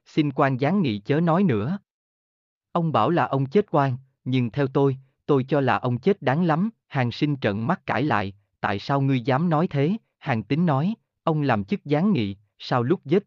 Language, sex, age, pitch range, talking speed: Vietnamese, male, 20-39, 110-160 Hz, 210 wpm